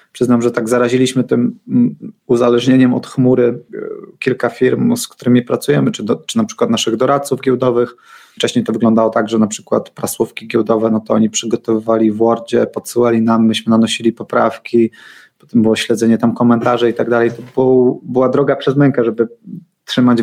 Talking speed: 165 wpm